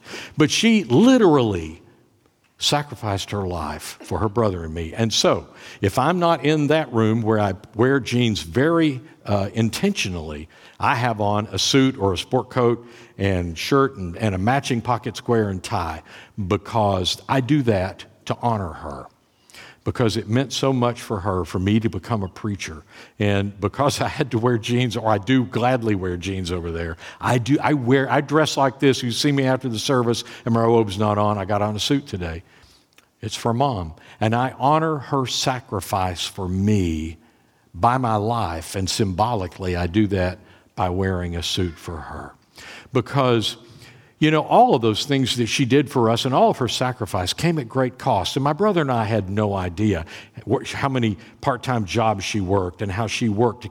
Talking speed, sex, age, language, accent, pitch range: 190 wpm, male, 50-69, English, American, 95-130 Hz